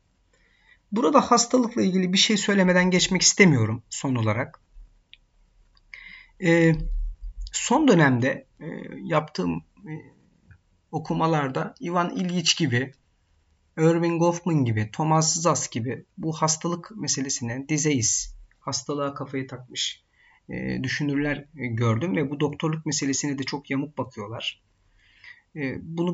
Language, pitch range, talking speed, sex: Turkish, 120-155 Hz, 110 wpm, male